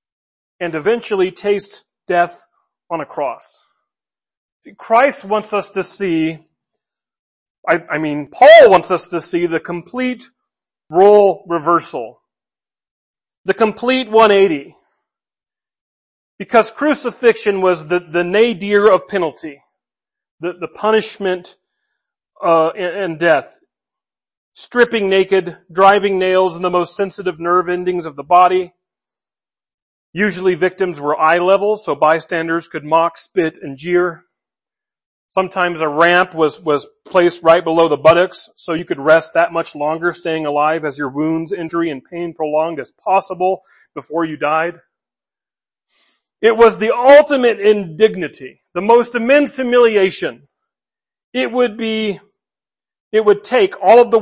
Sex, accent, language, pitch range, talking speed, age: male, American, English, 165-215 Hz, 130 wpm, 40-59